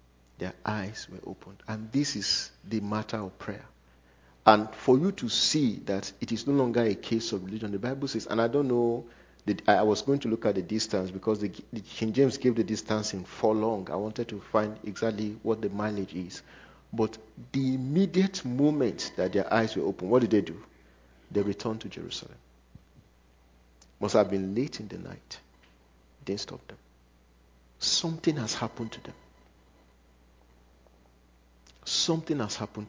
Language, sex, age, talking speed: English, male, 50-69, 170 wpm